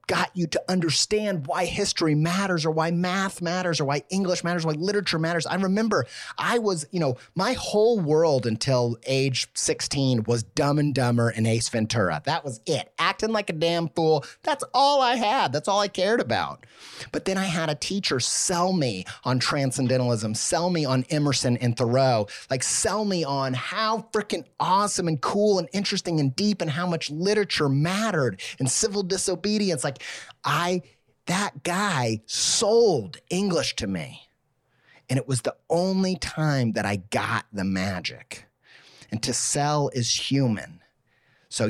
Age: 30-49